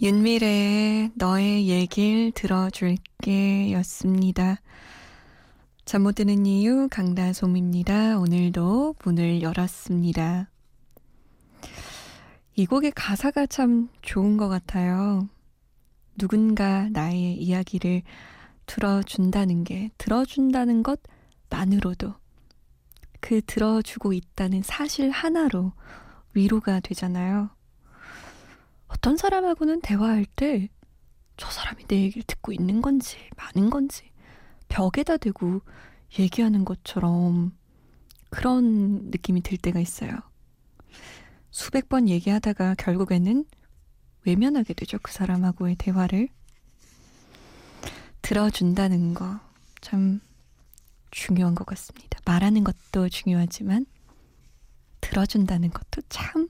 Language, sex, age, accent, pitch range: Korean, female, 20-39, native, 180-220 Hz